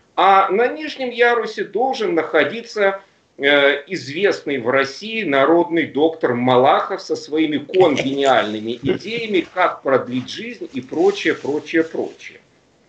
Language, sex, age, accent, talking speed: Russian, male, 50-69, native, 110 wpm